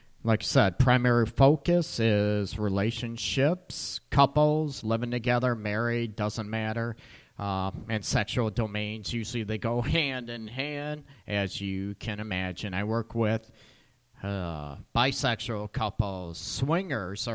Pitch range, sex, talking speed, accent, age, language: 110-135 Hz, male, 120 wpm, American, 40-59, English